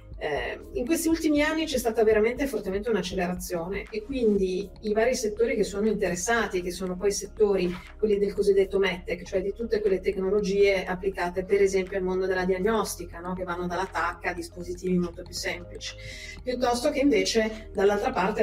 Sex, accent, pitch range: female, native, 185-215 Hz